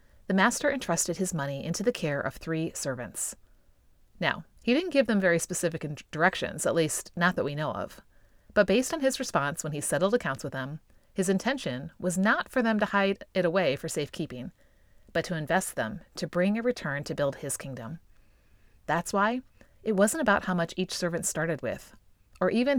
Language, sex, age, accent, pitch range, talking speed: English, female, 30-49, American, 150-205 Hz, 195 wpm